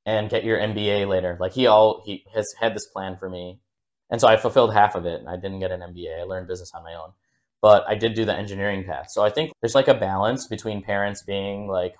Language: English